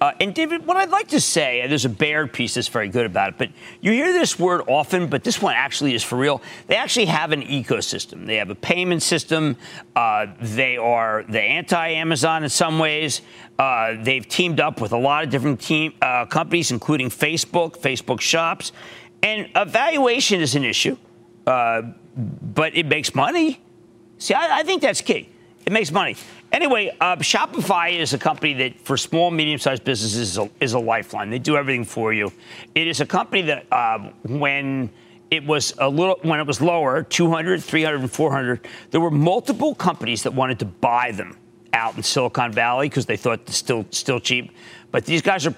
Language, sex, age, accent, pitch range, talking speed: English, male, 50-69, American, 120-170 Hz, 195 wpm